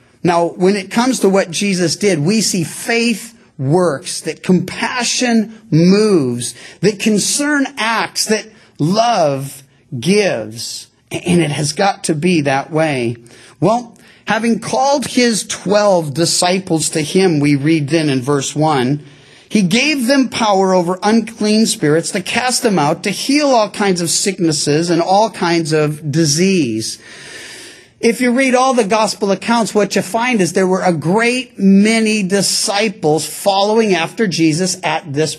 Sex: male